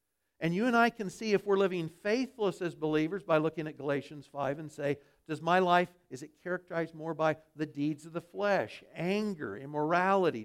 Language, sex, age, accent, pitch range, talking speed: English, male, 60-79, American, 150-190 Hz, 195 wpm